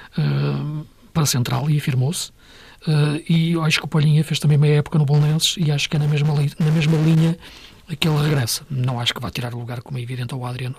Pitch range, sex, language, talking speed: 135-160 Hz, male, Portuguese, 235 wpm